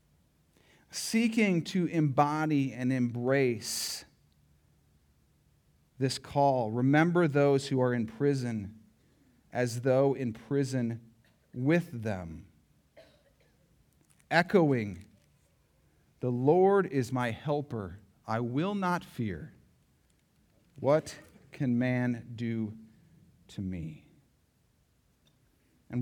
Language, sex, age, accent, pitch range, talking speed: English, male, 40-59, American, 115-155 Hz, 85 wpm